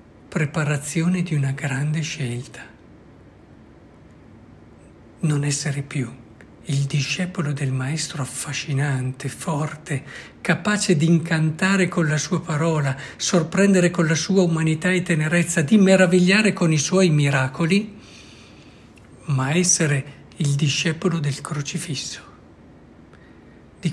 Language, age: Italian, 60-79